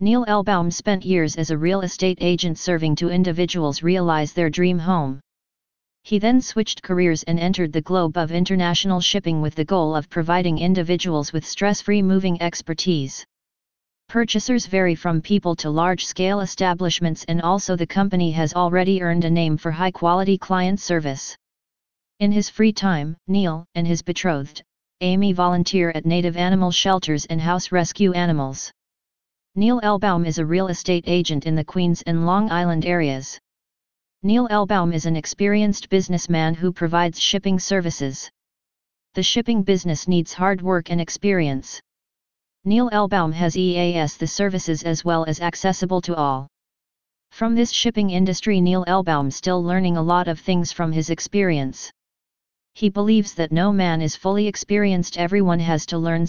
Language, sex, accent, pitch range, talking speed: English, female, American, 165-190 Hz, 160 wpm